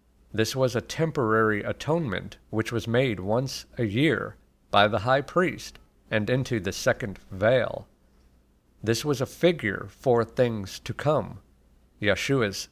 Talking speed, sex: 135 wpm, male